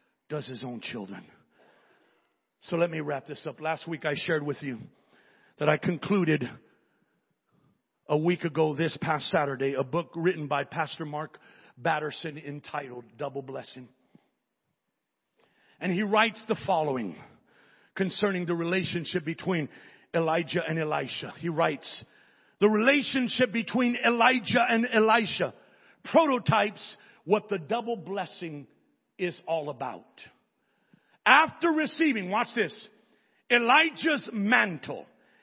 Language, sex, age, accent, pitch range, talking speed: English, male, 50-69, American, 165-275 Hz, 115 wpm